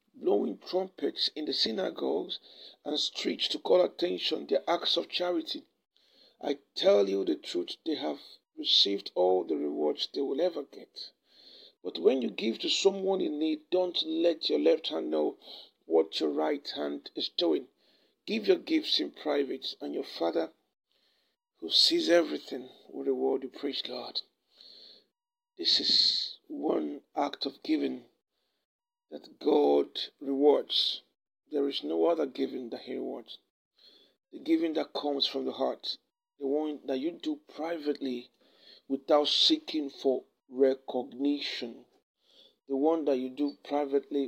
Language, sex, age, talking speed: English, male, 50-69, 140 wpm